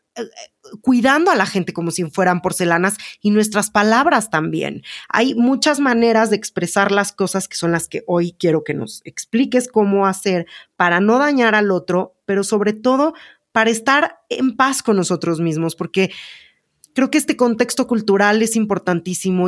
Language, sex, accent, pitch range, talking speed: Spanish, female, Mexican, 180-235 Hz, 165 wpm